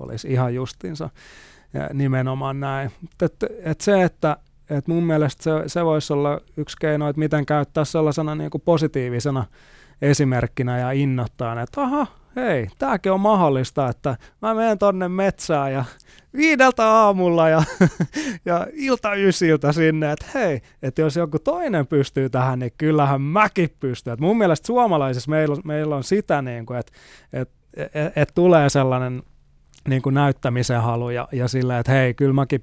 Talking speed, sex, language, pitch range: 155 wpm, male, Finnish, 125-155 Hz